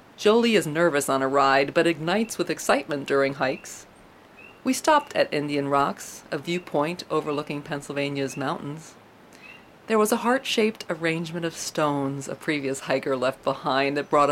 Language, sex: English, female